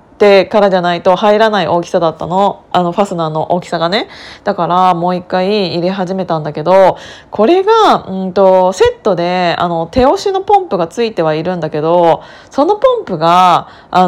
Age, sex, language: 20-39, female, Japanese